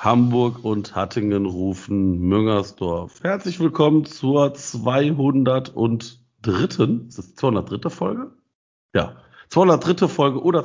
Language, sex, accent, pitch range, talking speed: German, male, German, 105-125 Hz, 95 wpm